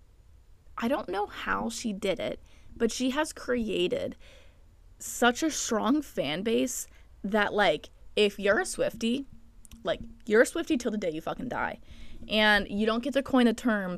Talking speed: 170 wpm